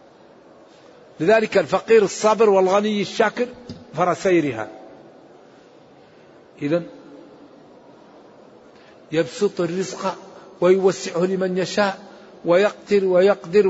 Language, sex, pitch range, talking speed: Arabic, male, 175-205 Hz, 60 wpm